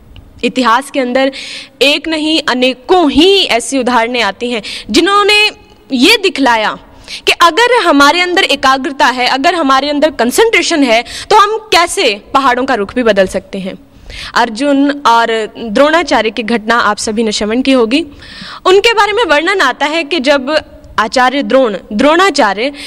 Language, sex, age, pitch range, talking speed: Hindi, female, 20-39, 240-350 Hz, 150 wpm